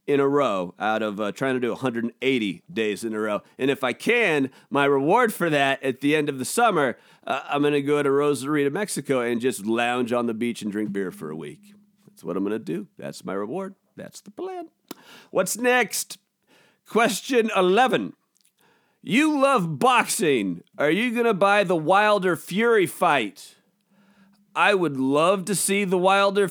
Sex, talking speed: male, 190 wpm